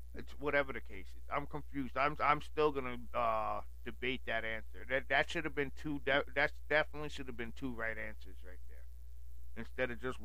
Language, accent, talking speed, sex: English, American, 210 wpm, male